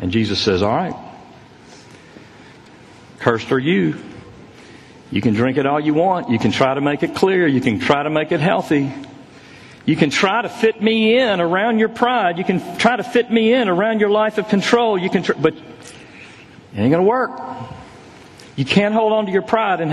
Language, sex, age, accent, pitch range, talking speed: English, male, 50-69, American, 165-230 Hz, 205 wpm